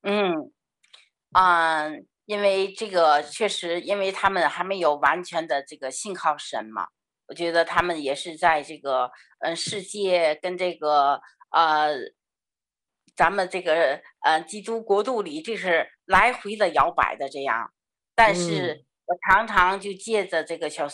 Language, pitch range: Chinese, 160-195 Hz